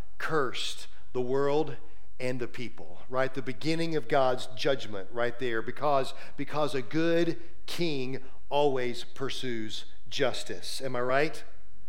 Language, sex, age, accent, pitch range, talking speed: English, male, 40-59, American, 120-170 Hz, 125 wpm